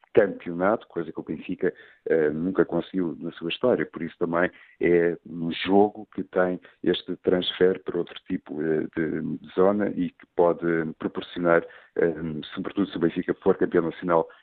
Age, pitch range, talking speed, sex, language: 50-69, 85-100 Hz, 155 wpm, male, Portuguese